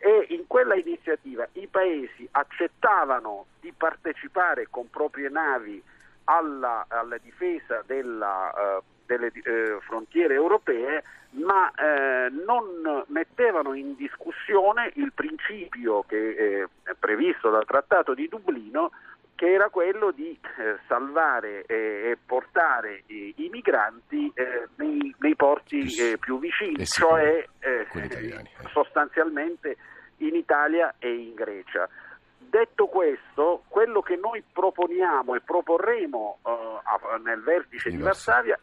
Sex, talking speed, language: male, 105 wpm, Italian